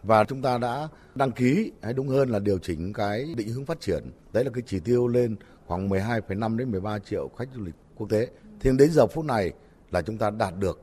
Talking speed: 240 wpm